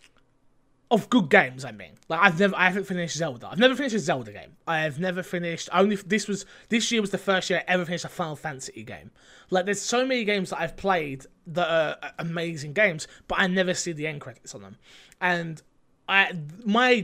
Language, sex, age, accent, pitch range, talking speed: English, male, 20-39, British, 150-190 Hz, 220 wpm